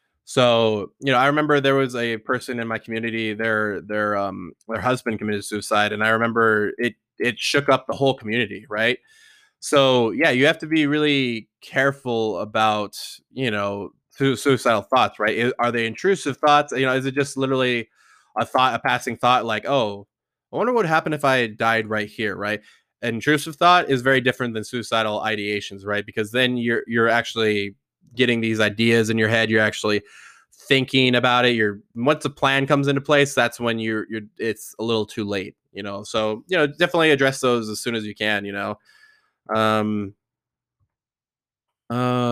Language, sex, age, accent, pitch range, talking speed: English, male, 20-39, American, 110-135 Hz, 185 wpm